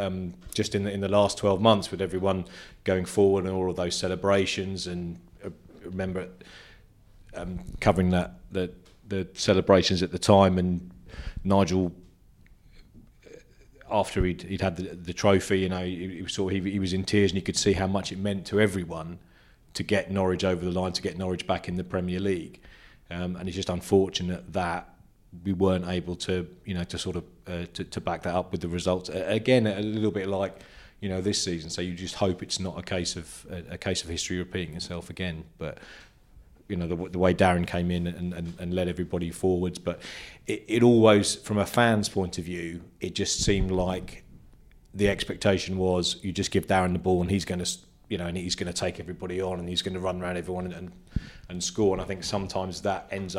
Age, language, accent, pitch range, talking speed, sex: 30-49, English, British, 90-95 Hz, 215 wpm, male